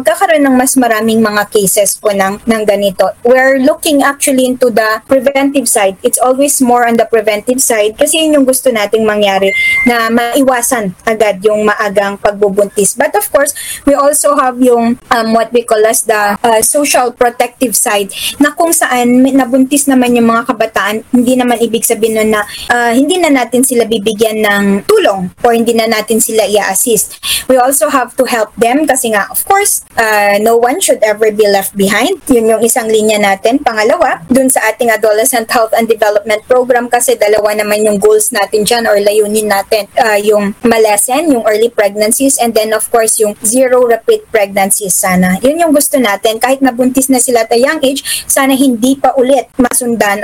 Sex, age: female, 20-39